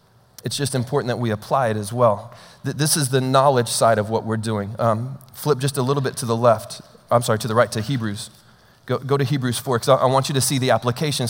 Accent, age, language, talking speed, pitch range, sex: American, 30-49, English, 255 wpm, 115-140 Hz, male